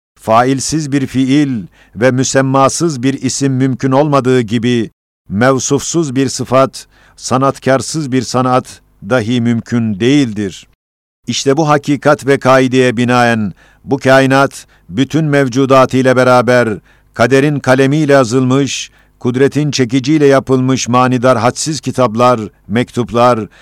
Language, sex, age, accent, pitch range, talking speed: Turkish, male, 50-69, native, 120-135 Hz, 100 wpm